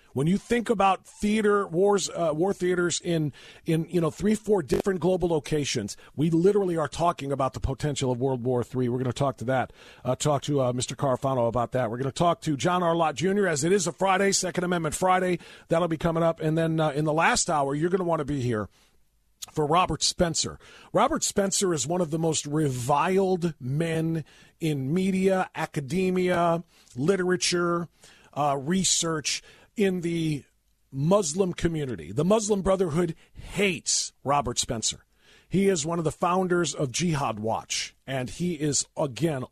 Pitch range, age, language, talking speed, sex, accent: 125-175 Hz, 40-59, English, 180 wpm, male, American